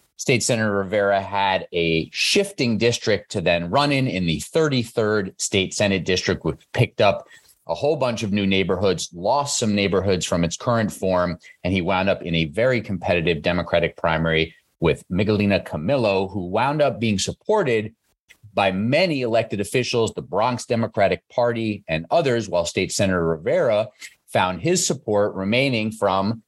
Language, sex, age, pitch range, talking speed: English, male, 30-49, 90-120 Hz, 160 wpm